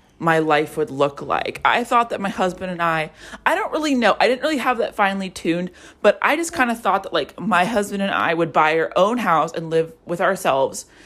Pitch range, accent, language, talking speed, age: 170-225 Hz, American, English, 240 wpm, 20-39